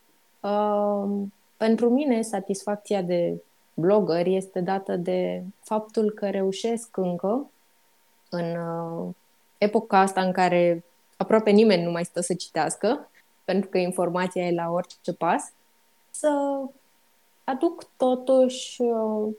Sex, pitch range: female, 190-245 Hz